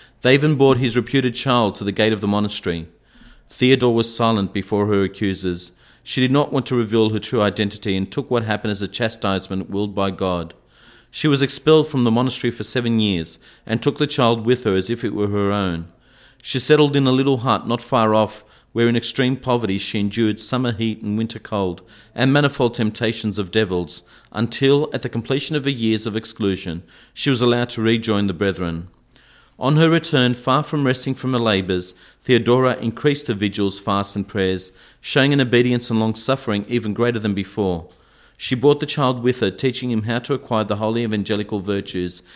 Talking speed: 195 wpm